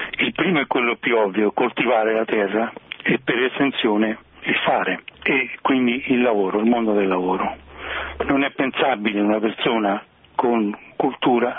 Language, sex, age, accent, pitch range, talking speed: Italian, male, 60-79, native, 105-120 Hz, 150 wpm